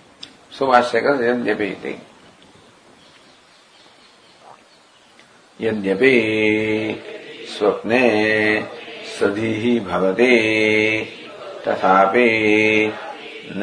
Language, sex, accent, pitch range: English, male, Indian, 105-120 Hz